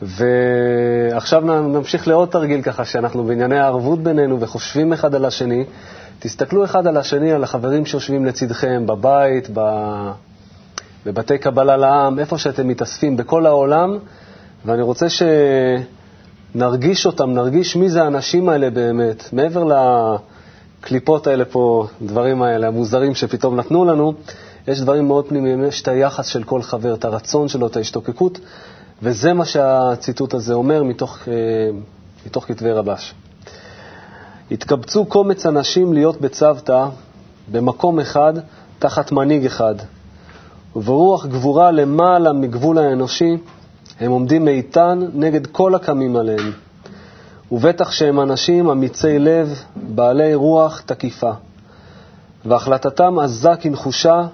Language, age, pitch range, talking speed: Hebrew, 30-49, 120-155 Hz, 120 wpm